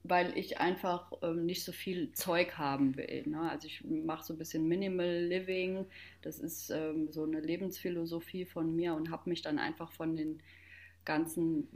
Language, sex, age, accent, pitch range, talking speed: German, female, 30-49, German, 160-185 Hz, 175 wpm